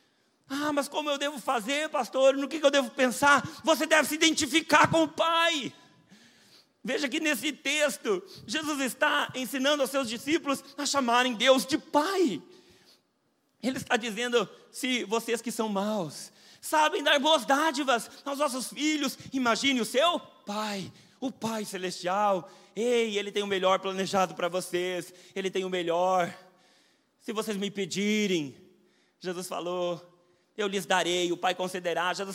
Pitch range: 195-270 Hz